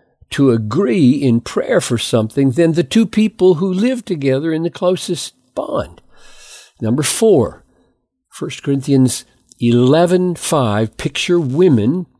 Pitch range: 125-180 Hz